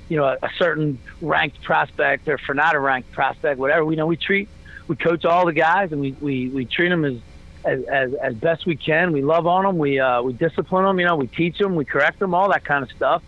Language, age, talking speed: English, 40-59, 255 wpm